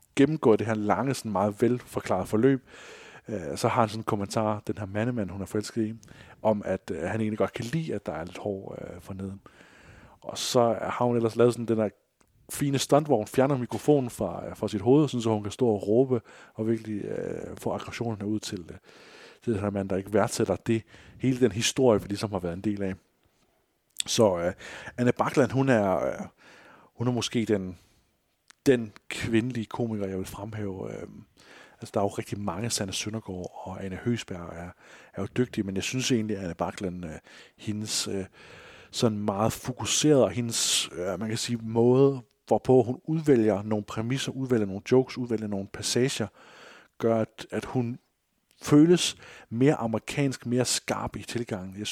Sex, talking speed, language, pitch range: male, 185 wpm, Danish, 100-125 Hz